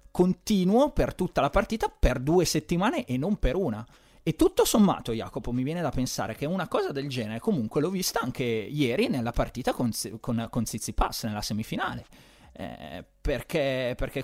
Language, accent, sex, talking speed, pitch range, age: Italian, native, male, 170 wpm, 120-170 Hz, 30-49